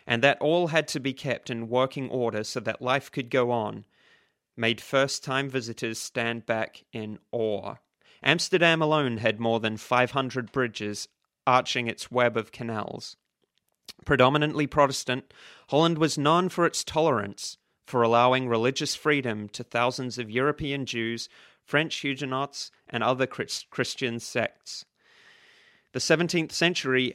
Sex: male